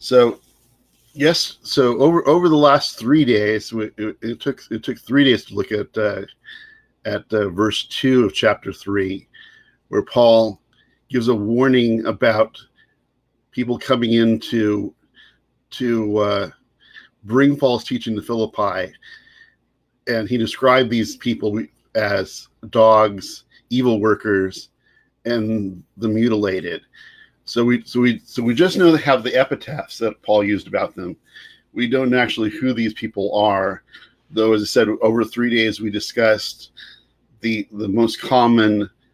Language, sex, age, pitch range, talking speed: English, male, 50-69, 105-125 Hz, 145 wpm